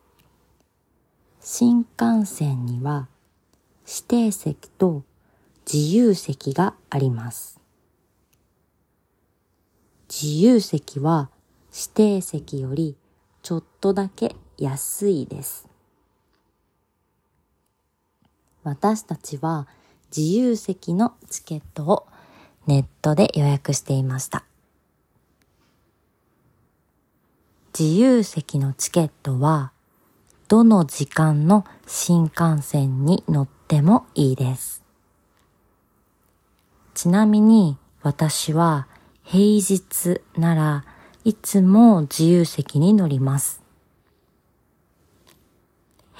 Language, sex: Japanese, female